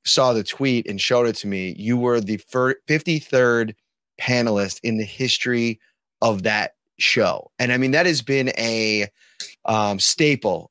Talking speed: 155 wpm